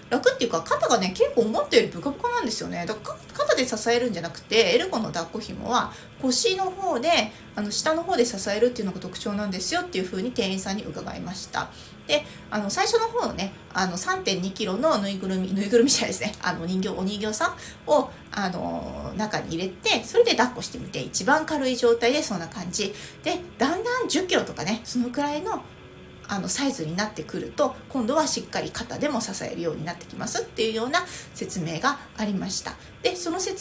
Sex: female